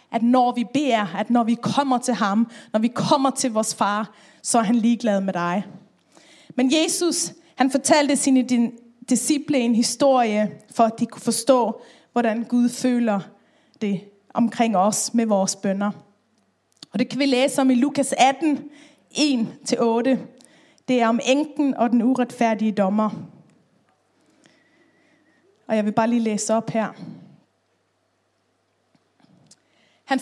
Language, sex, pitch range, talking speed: Danish, female, 230-280 Hz, 140 wpm